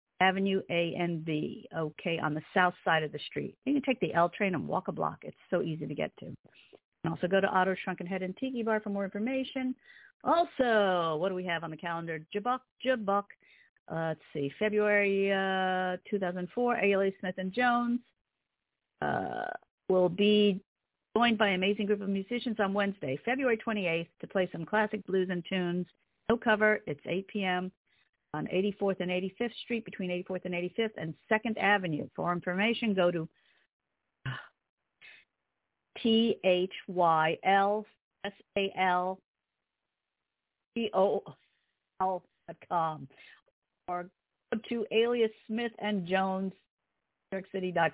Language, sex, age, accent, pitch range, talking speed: English, female, 50-69, American, 175-215 Hz, 155 wpm